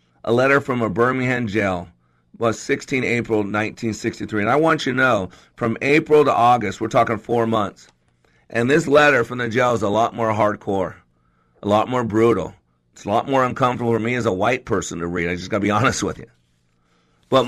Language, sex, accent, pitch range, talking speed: English, male, American, 95-135 Hz, 205 wpm